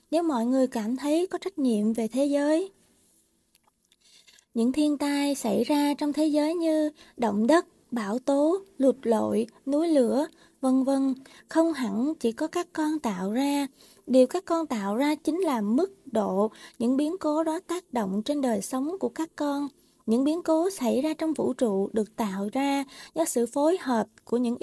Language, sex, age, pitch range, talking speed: Vietnamese, female, 20-39, 235-315 Hz, 185 wpm